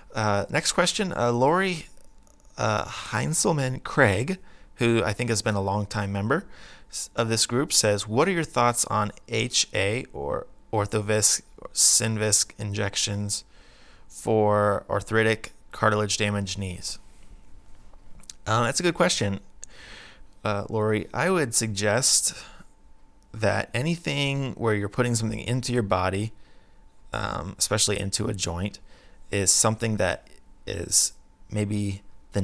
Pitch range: 100-110 Hz